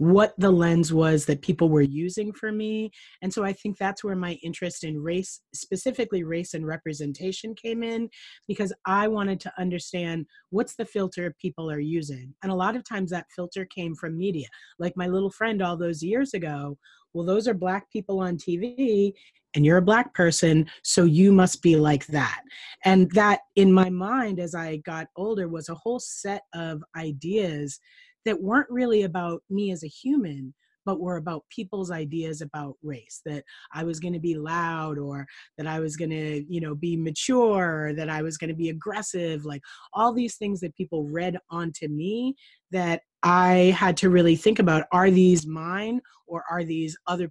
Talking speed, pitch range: 190 wpm, 160-200 Hz